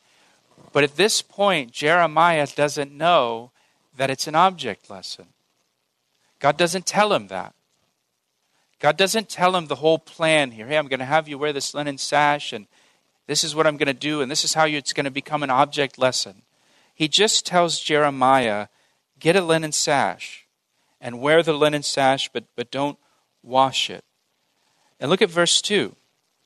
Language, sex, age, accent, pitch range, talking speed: English, male, 40-59, American, 135-175 Hz, 175 wpm